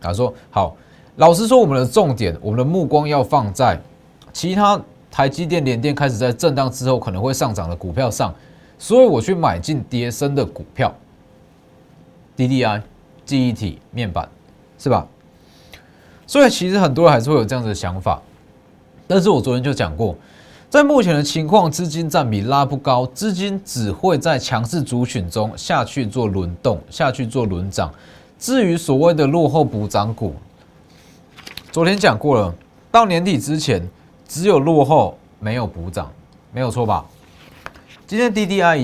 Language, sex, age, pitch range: Chinese, male, 20-39, 105-165 Hz